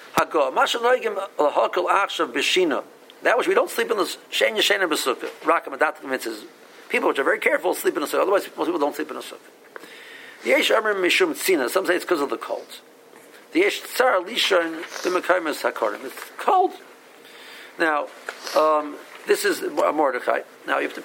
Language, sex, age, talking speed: English, male, 50-69, 140 wpm